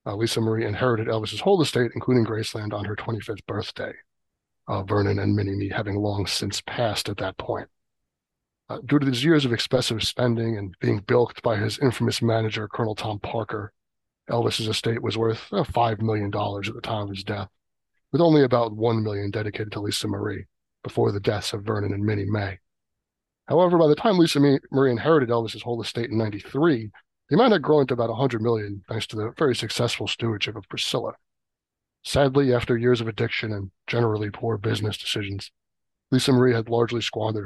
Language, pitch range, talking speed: English, 105-120 Hz, 185 wpm